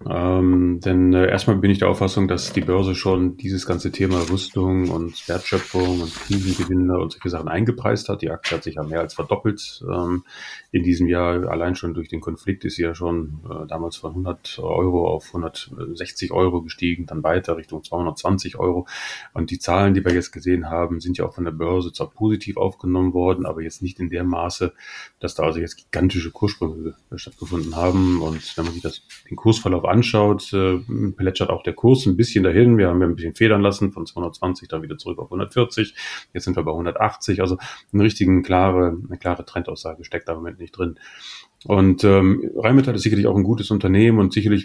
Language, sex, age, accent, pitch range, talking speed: German, male, 30-49, German, 85-100 Hz, 205 wpm